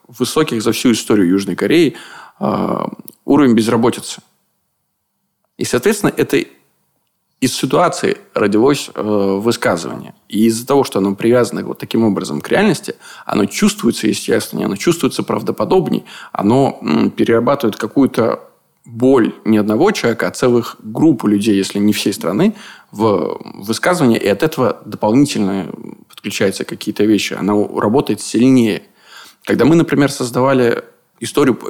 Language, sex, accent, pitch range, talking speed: Russian, male, native, 100-120 Hz, 125 wpm